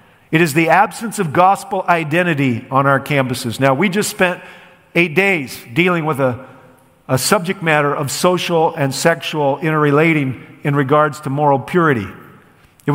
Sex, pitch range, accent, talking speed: male, 145-200 Hz, American, 155 wpm